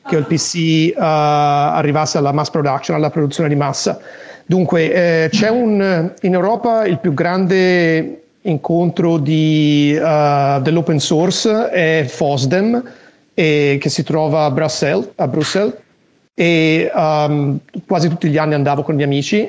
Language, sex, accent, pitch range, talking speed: Italian, male, native, 145-175 Hz, 125 wpm